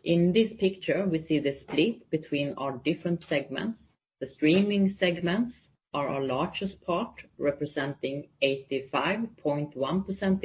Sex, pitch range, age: female, 145-180 Hz, 30-49